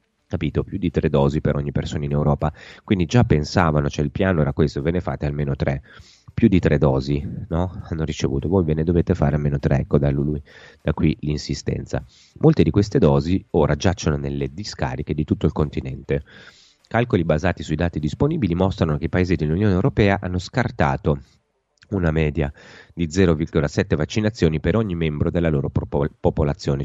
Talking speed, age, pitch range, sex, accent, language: 175 wpm, 30-49, 70-85 Hz, male, native, Italian